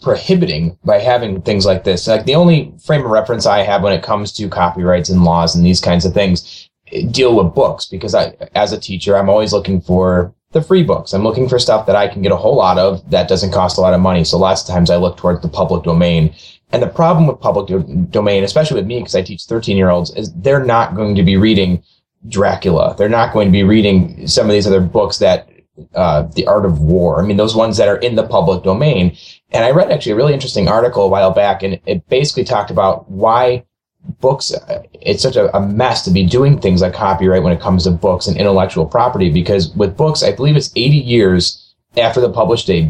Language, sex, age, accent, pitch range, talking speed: English, male, 30-49, American, 90-120 Hz, 240 wpm